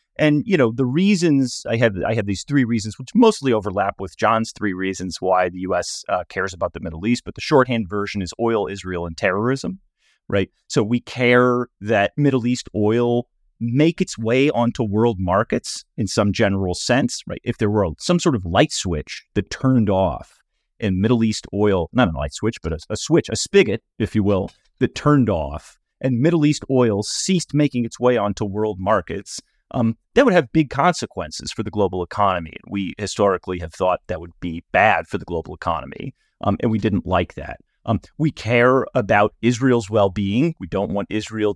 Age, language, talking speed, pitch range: 30-49, English, 195 wpm, 95-125 Hz